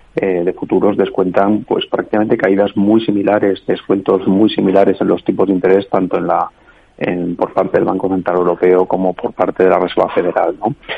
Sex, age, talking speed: male, 40-59, 190 wpm